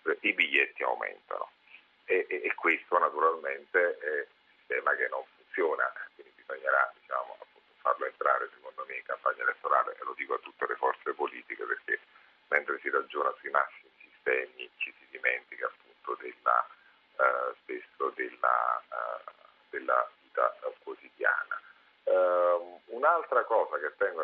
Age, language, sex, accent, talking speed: 40-59, Italian, male, native, 140 wpm